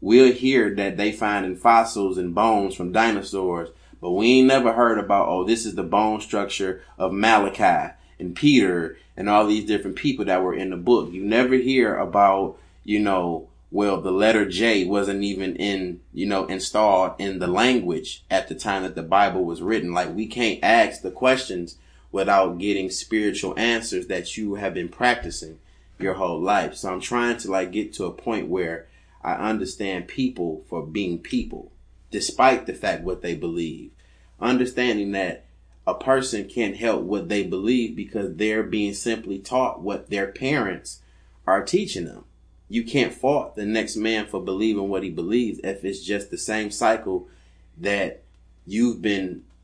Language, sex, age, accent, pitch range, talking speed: English, male, 20-39, American, 95-110 Hz, 175 wpm